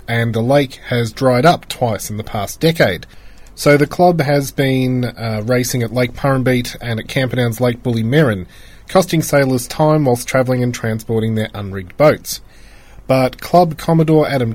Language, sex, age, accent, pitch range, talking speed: English, male, 30-49, Australian, 120-155 Hz, 170 wpm